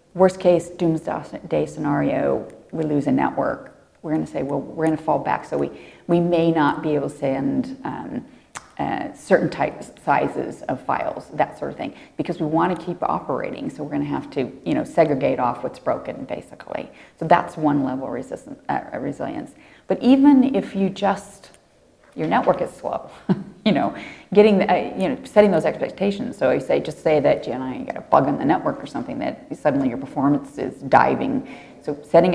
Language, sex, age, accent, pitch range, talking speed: English, female, 30-49, American, 150-210 Hz, 195 wpm